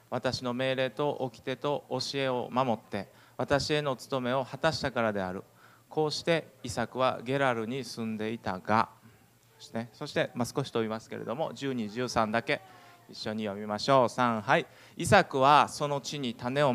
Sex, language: male, Japanese